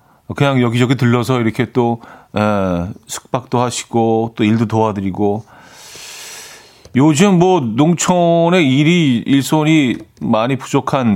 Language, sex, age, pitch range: Korean, male, 40-59, 105-140 Hz